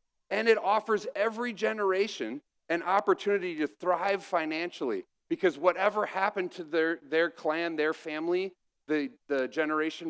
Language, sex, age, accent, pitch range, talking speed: English, male, 40-59, American, 155-225 Hz, 130 wpm